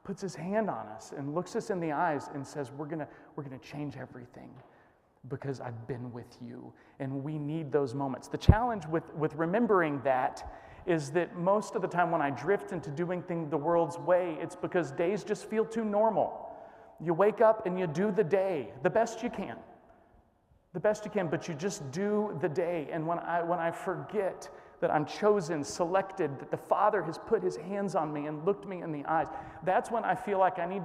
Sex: male